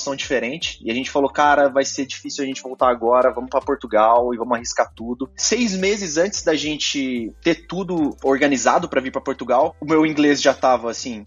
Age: 20-39